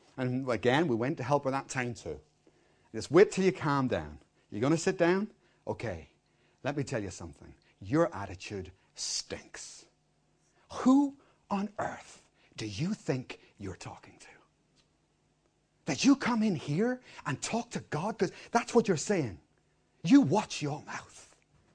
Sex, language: male, English